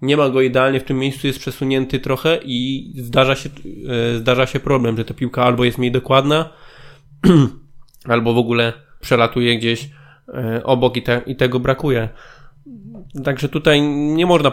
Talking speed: 155 wpm